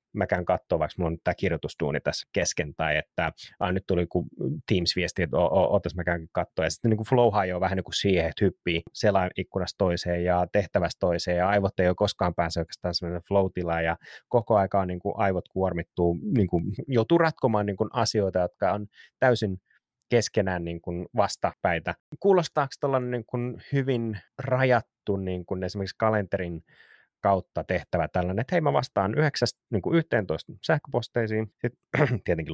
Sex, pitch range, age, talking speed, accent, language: male, 90-115 Hz, 30-49, 150 wpm, native, Finnish